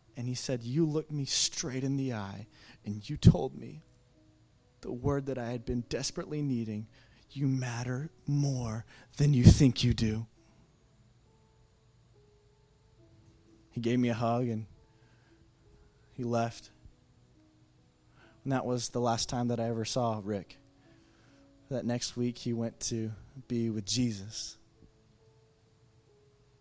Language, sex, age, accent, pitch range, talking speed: English, male, 20-39, American, 110-140 Hz, 130 wpm